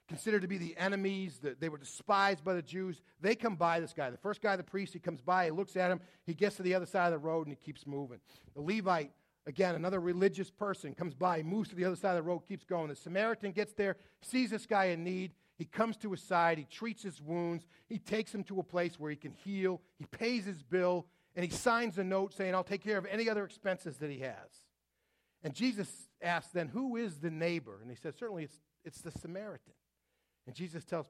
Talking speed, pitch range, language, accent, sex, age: 245 wpm, 145-200 Hz, English, American, male, 40-59